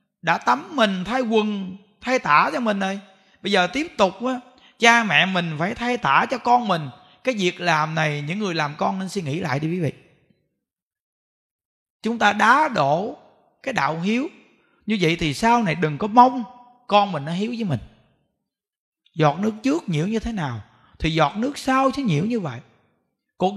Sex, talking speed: male, 190 wpm